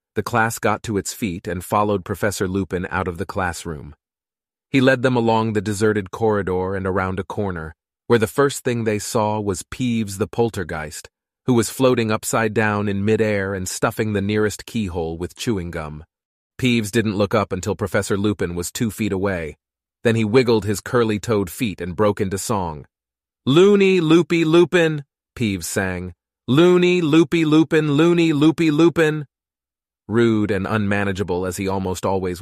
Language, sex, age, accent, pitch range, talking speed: English, male, 30-49, American, 95-115 Hz, 165 wpm